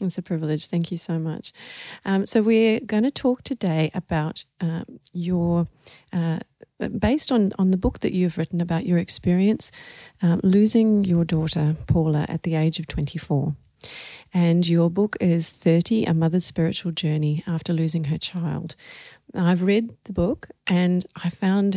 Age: 40-59